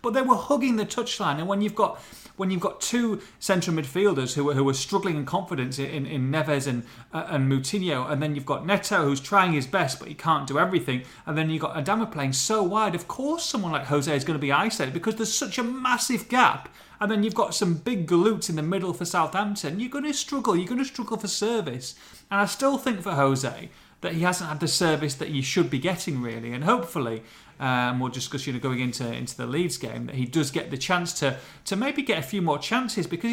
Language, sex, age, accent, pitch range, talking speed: English, male, 30-49, British, 145-205 Hz, 245 wpm